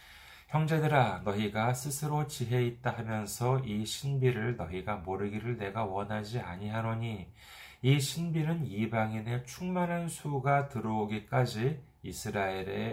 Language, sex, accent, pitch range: Korean, male, native, 90-125 Hz